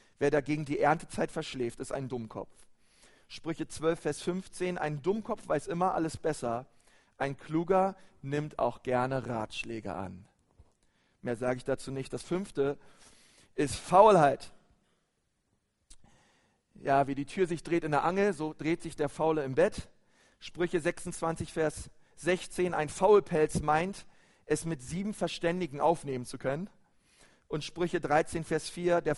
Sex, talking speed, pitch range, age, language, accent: male, 145 wpm, 145-185 Hz, 40-59, German, German